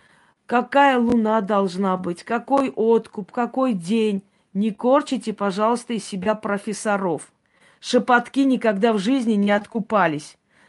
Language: Russian